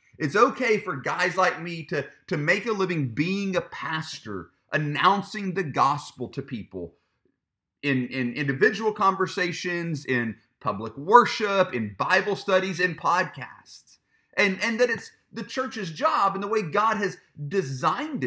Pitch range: 140-195 Hz